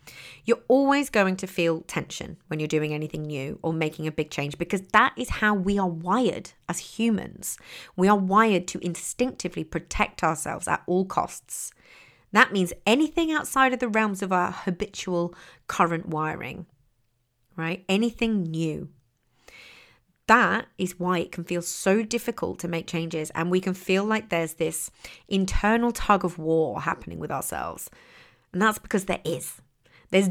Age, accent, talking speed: 30-49, British, 160 wpm